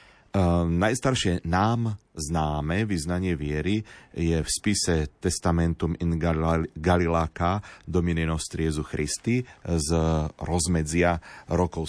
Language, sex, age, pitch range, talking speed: Slovak, male, 40-59, 80-95 Hz, 85 wpm